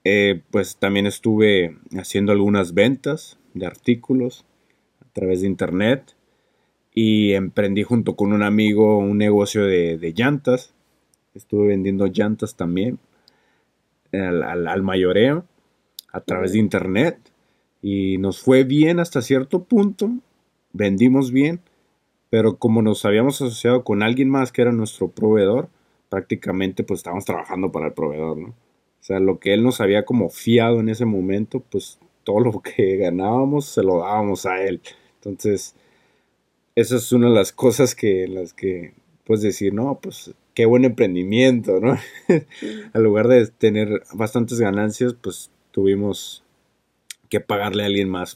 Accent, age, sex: Mexican, 30-49, male